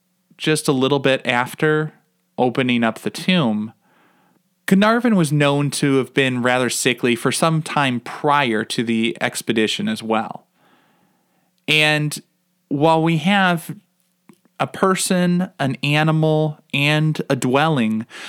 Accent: American